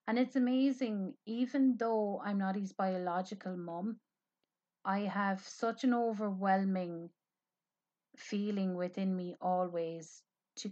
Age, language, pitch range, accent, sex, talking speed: 30-49, English, 165-190 Hz, Irish, female, 110 wpm